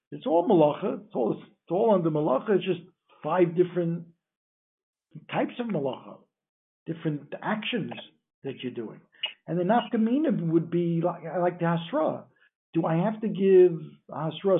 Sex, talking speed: male, 145 wpm